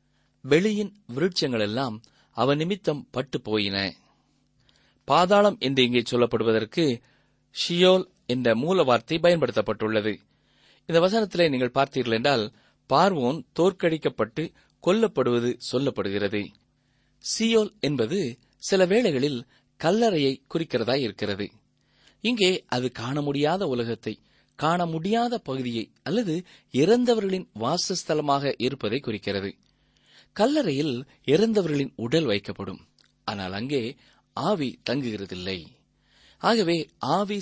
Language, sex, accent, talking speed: Tamil, male, native, 80 wpm